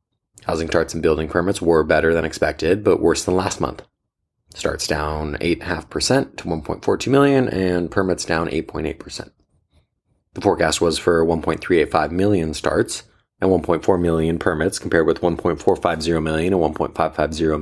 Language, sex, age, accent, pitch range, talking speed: English, male, 30-49, American, 80-110 Hz, 140 wpm